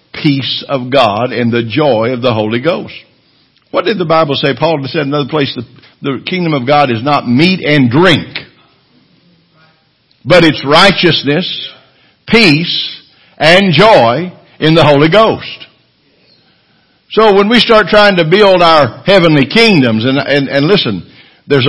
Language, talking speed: English, 150 wpm